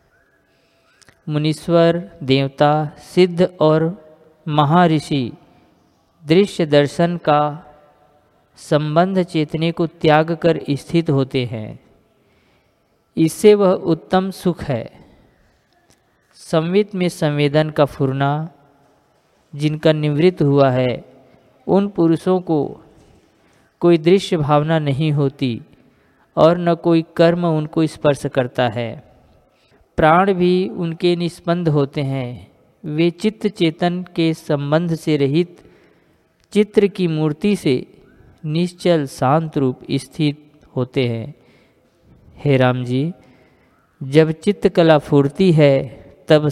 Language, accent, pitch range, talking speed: Hindi, native, 135-170 Hz, 100 wpm